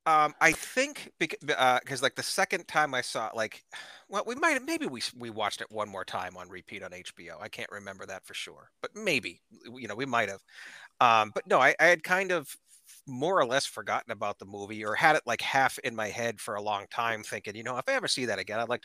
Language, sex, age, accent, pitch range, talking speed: English, male, 30-49, American, 110-150 Hz, 255 wpm